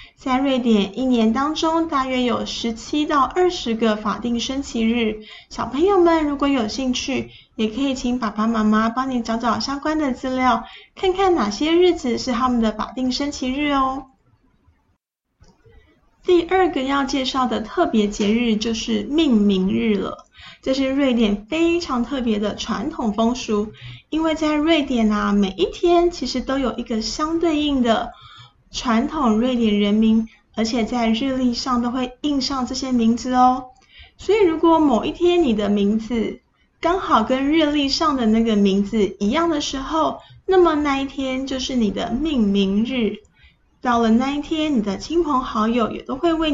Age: 10-29